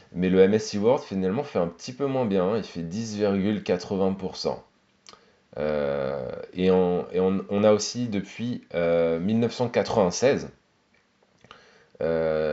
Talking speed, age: 120 wpm, 20-39